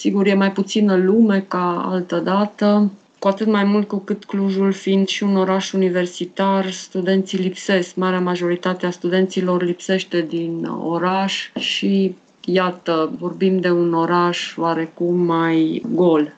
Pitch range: 165-195 Hz